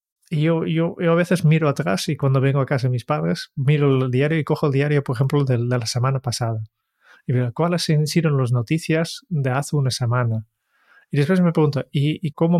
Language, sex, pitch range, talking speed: Spanish, male, 130-160 Hz, 230 wpm